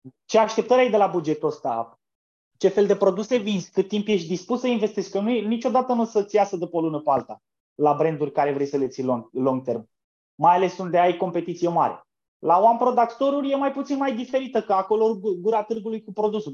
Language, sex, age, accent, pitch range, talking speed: Romanian, male, 20-39, native, 160-215 Hz, 215 wpm